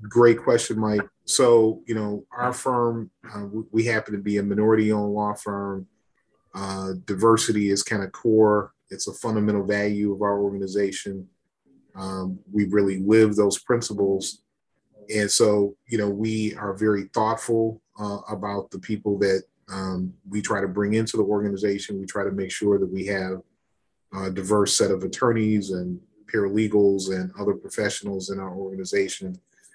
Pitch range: 100-110 Hz